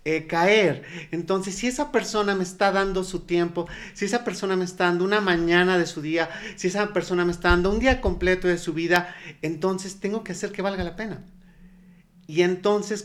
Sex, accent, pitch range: male, Mexican, 160-190 Hz